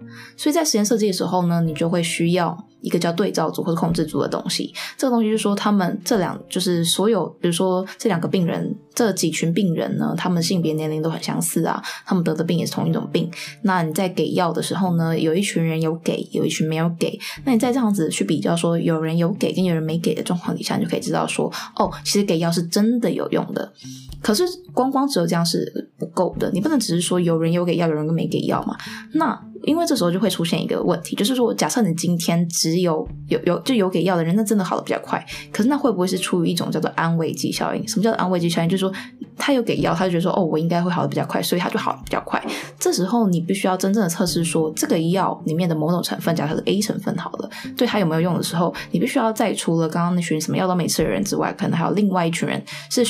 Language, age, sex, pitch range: Chinese, 20-39, female, 165-215 Hz